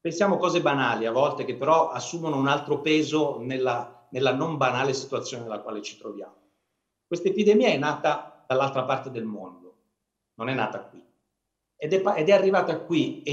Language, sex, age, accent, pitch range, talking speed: Italian, male, 50-69, native, 140-205 Hz, 175 wpm